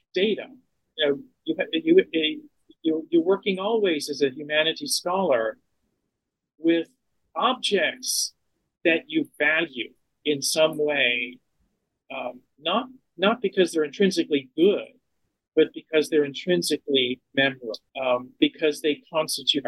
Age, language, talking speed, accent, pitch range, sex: 40-59, English, 115 wpm, American, 135-190 Hz, male